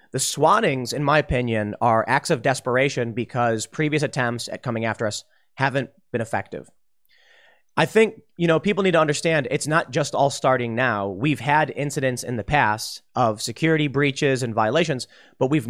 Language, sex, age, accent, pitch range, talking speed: English, male, 30-49, American, 115-155 Hz, 175 wpm